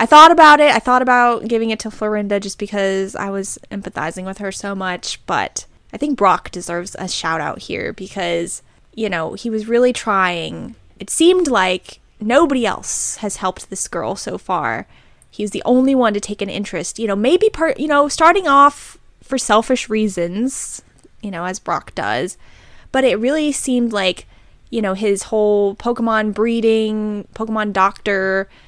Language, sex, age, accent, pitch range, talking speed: English, female, 10-29, American, 195-245 Hz, 175 wpm